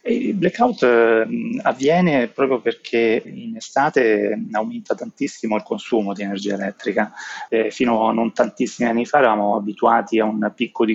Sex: male